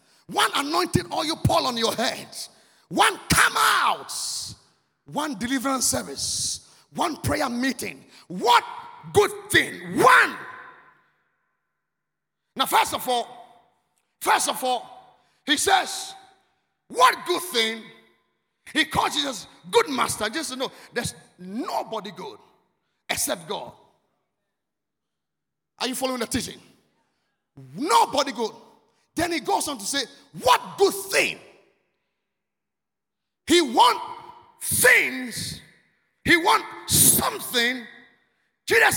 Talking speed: 105 wpm